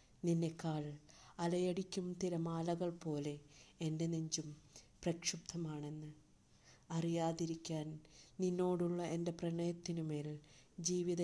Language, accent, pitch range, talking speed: Malayalam, native, 155-175 Hz, 65 wpm